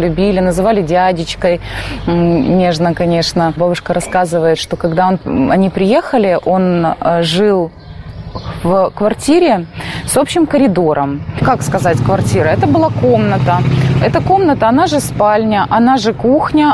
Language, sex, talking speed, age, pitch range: Russian, female, 120 wpm, 20-39, 170-225 Hz